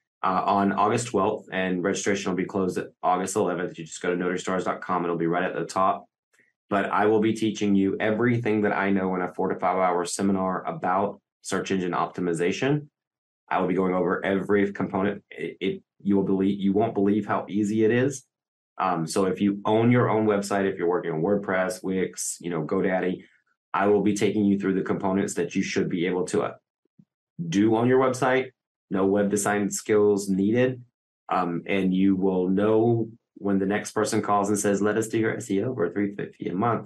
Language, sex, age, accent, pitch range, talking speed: English, male, 20-39, American, 90-105 Hz, 200 wpm